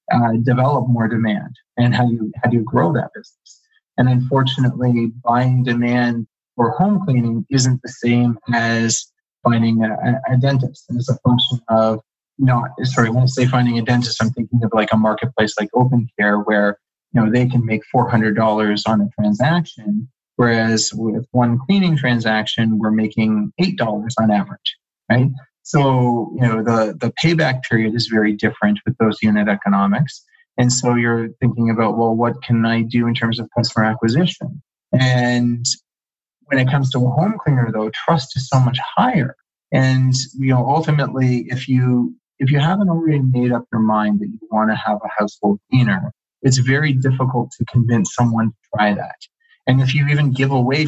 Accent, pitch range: American, 110-130 Hz